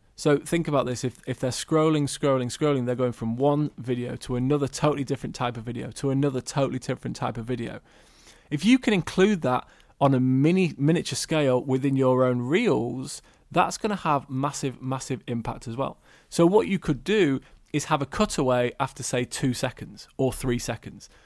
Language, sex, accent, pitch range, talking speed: English, male, British, 125-155 Hz, 190 wpm